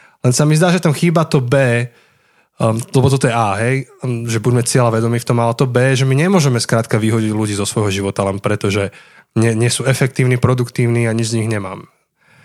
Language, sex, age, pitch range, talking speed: Slovak, male, 20-39, 115-140 Hz, 210 wpm